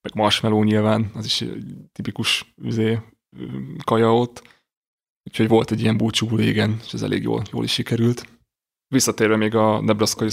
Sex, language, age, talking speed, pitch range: male, Hungarian, 20-39, 155 wpm, 105-115 Hz